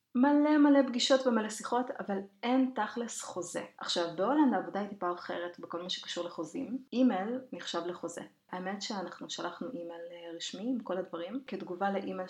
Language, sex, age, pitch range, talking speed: Hebrew, female, 30-49, 180-255 Hz, 155 wpm